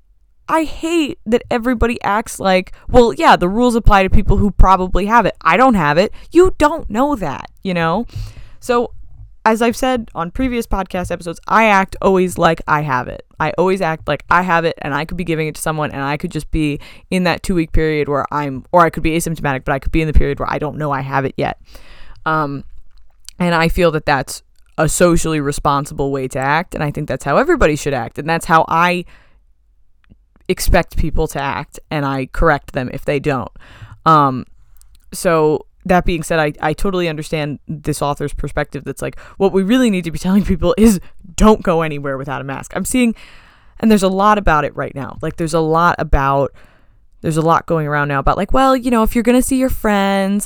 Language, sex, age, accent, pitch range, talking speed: English, female, 10-29, American, 145-210 Hz, 220 wpm